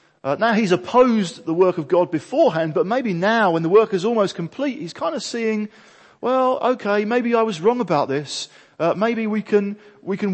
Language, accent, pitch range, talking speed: English, British, 160-220 Hz, 210 wpm